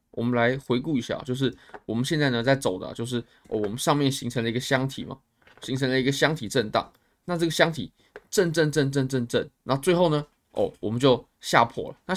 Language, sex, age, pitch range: Chinese, male, 20-39, 125-170 Hz